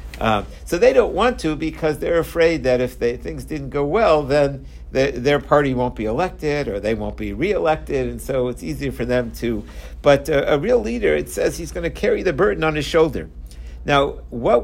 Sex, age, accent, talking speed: male, 60-79, American, 245 wpm